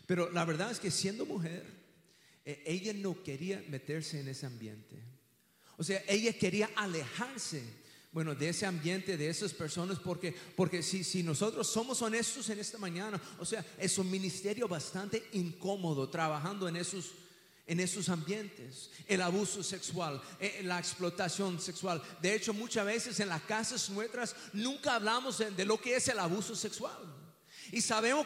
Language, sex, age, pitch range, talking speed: English, male, 40-59, 165-215 Hz, 155 wpm